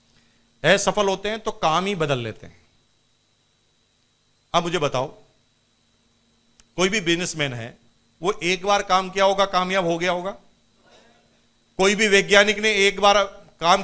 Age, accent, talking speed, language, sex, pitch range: 40-59, native, 145 wpm, Hindi, male, 140-220 Hz